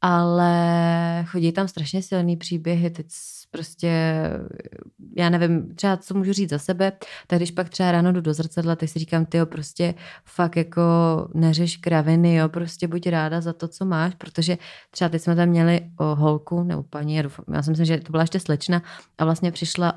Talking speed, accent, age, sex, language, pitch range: 185 wpm, native, 20-39, female, Czech, 160-175 Hz